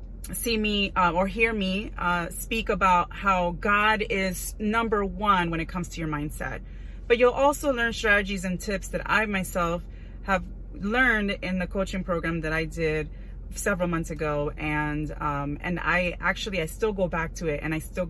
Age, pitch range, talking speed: 30-49, 155-195 Hz, 185 wpm